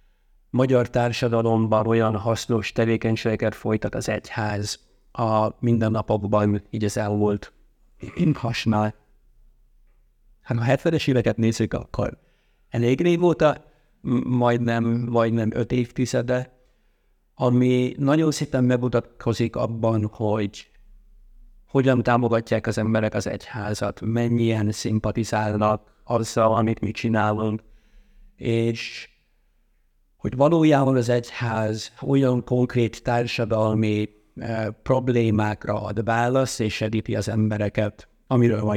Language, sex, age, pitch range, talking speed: Hungarian, male, 50-69, 105-120 Hz, 100 wpm